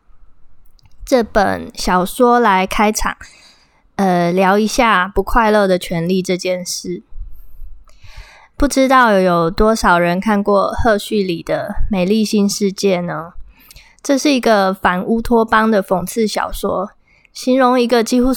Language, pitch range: Chinese, 185-230 Hz